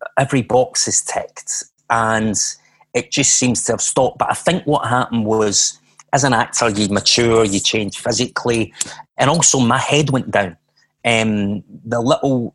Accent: British